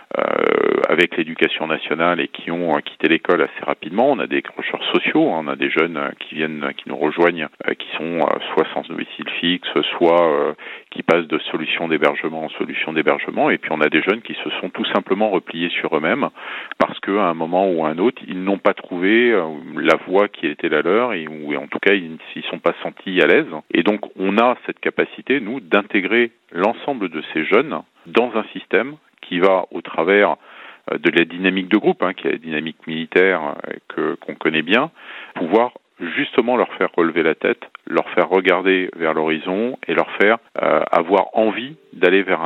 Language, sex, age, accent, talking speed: French, male, 40-59, French, 200 wpm